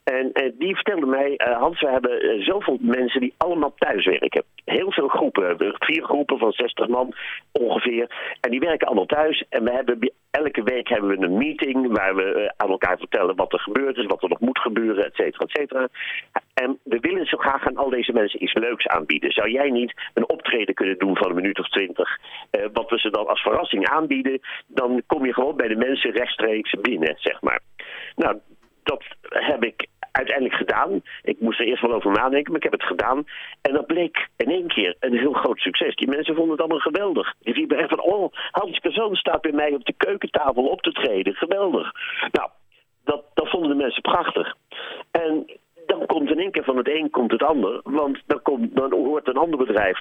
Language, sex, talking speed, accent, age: Dutch, male, 210 wpm, Dutch, 50-69